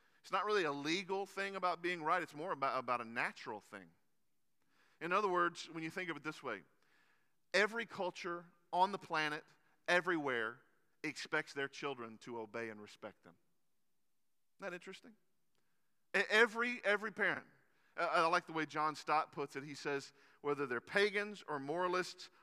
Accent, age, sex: American, 40-59, male